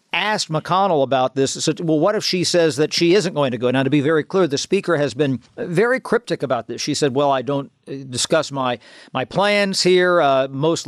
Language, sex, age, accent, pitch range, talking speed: English, male, 50-69, American, 135-160 Hz, 220 wpm